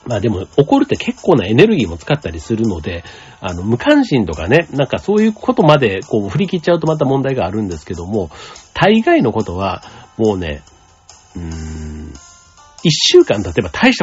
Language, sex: Japanese, male